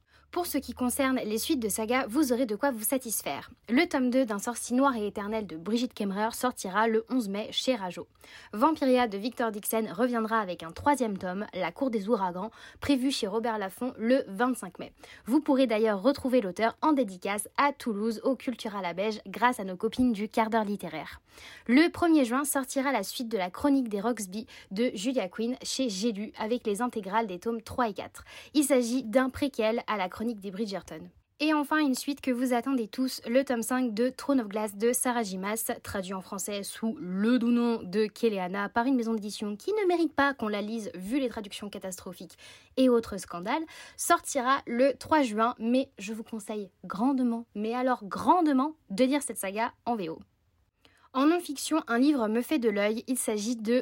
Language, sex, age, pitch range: French, female, 20-39, 210-260 Hz